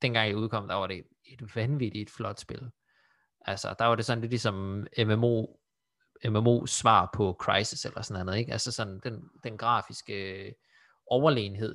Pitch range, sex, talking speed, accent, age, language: 105-135 Hz, male, 170 wpm, native, 20-39, Danish